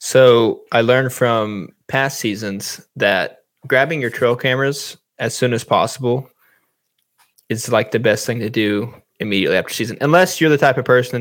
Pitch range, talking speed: 110-135 Hz, 165 wpm